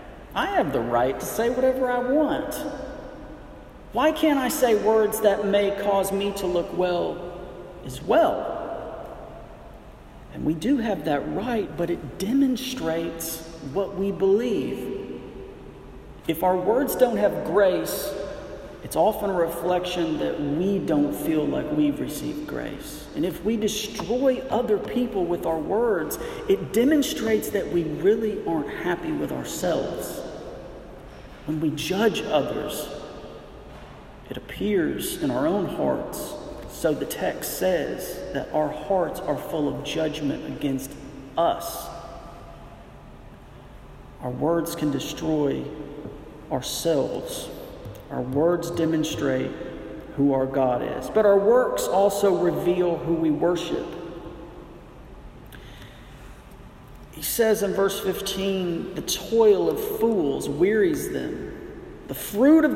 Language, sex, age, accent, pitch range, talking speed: English, male, 40-59, American, 165-235 Hz, 120 wpm